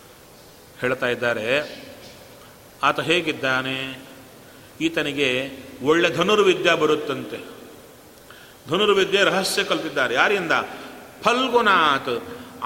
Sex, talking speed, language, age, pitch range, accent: male, 60 wpm, Kannada, 40-59, 150-230 Hz, native